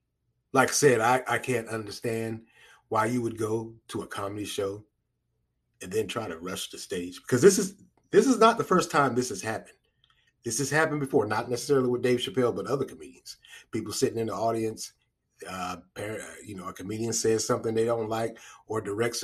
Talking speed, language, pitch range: 195 wpm, English, 115-145 Hz